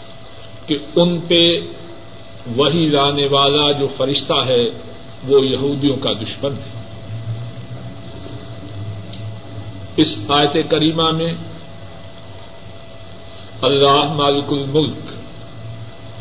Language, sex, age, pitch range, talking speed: Urdu, male, 50-69, 110-155 Hz, 80 wpm